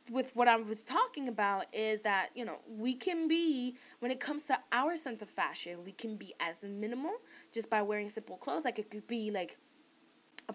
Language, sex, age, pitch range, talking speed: English, female, 20-39, 190-250 Hz, 210 wpm